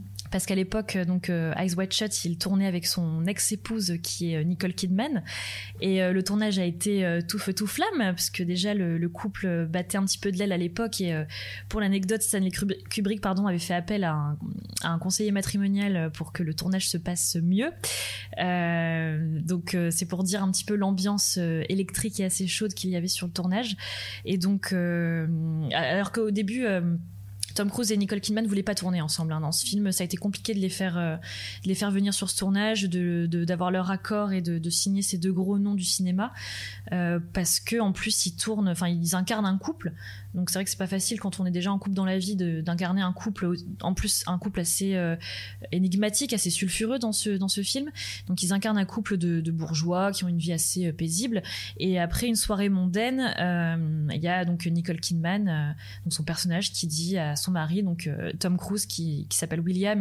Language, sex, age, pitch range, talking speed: French, female, 20-39, 165-195 Hz, 215 wpm